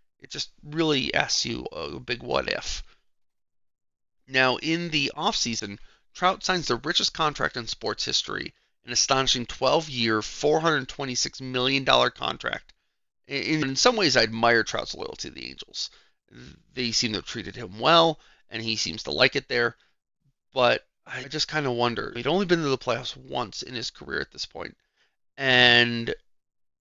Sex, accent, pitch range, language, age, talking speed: male, American, 115-150 Hz, English, 30-49, 155 wpm